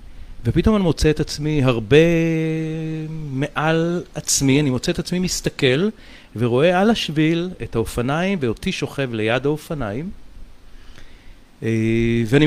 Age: 40-59